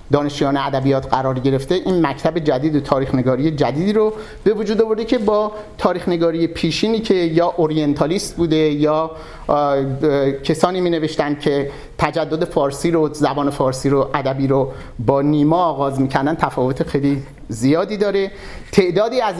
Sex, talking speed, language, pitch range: male, 150 wpm, Persian, 145-180 Hz